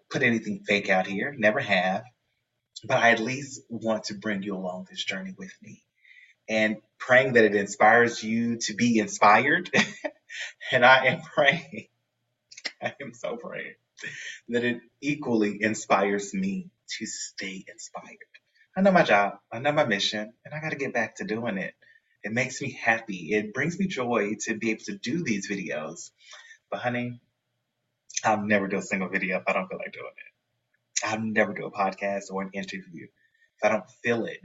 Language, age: English, 30-49